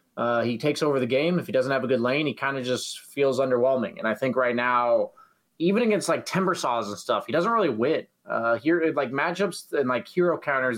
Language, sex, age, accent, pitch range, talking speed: English, male, 20-39, American, 110-135 Hz, 240 wpm